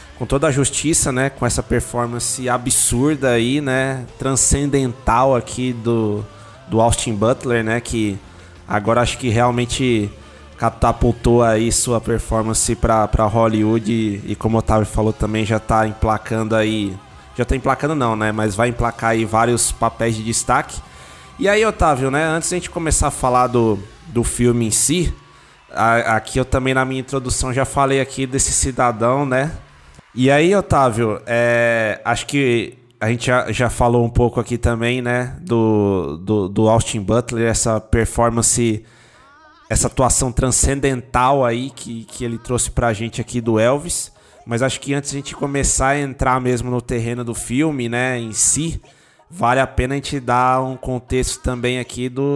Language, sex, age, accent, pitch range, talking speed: Portuguese, male, 20-39, Brazilian, 110-130 Hz, 165 wpm